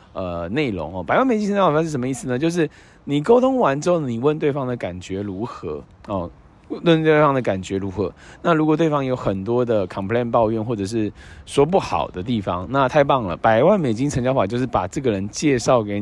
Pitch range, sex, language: 100-165 Hz, male, Chinese